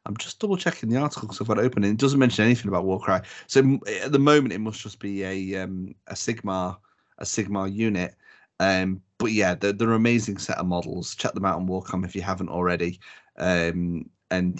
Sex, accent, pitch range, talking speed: male, British, 95-120 Hz, 220 wpm